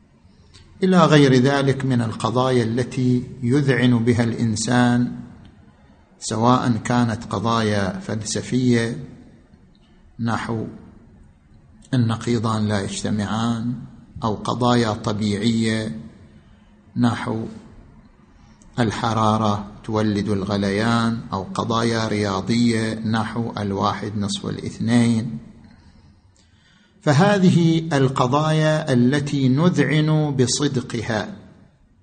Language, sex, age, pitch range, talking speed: Arabic, male, 50-69, 105-140 Hz, 65 wpm